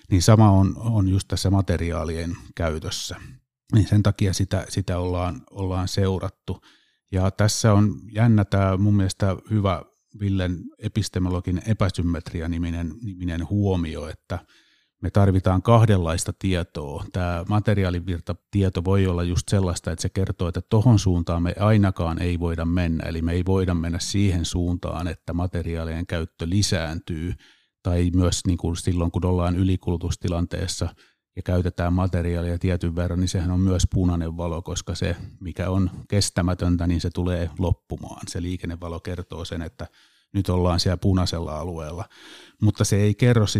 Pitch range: 85-100 Hz